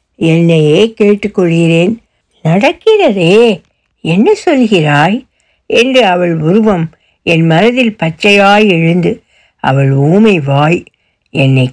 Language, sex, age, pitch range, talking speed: Tamil, female, 60-79, 165-235 Hz, 80 wpm